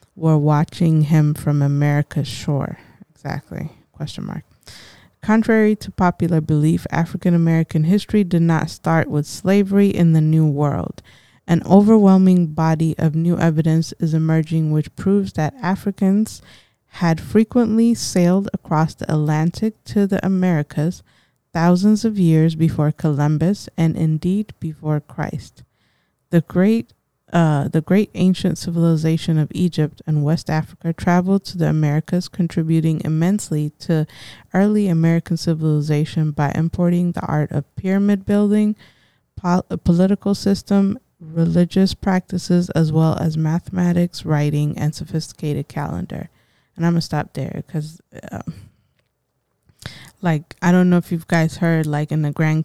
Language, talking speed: English, 135 wpm